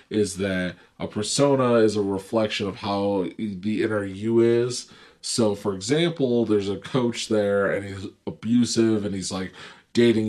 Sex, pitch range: male, 95-115 Hz